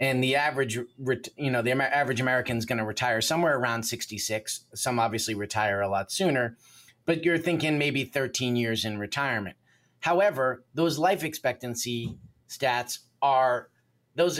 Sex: male